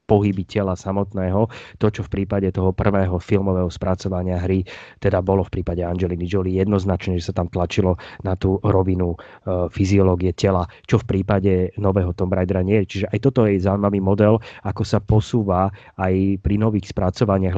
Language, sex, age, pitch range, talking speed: Slovak, male, 30-49, 95-105 Hz, 165 wpm